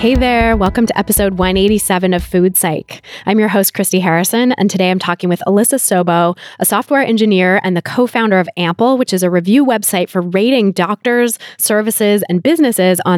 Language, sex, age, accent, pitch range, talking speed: English, female, 20-39, American, 180-220 Hz, 185 wpm